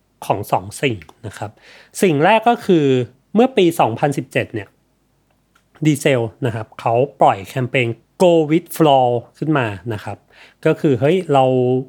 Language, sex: Thai, male